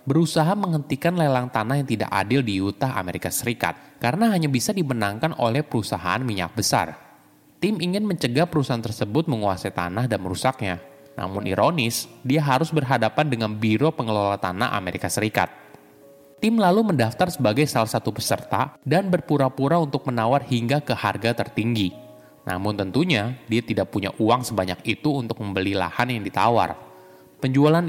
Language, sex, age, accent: Indonesian, male, 20-39, native